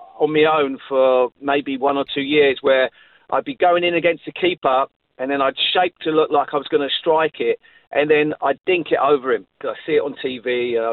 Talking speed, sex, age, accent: 245 wpm, male, 40-59, British